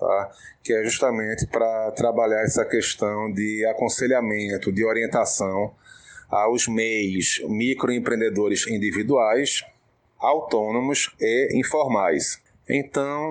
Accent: Brazilian